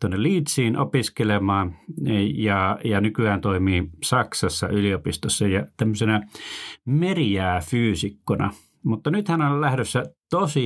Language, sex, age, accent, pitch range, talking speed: Finnish, male, 30-49, native, 95-120 Hz, 105 wpm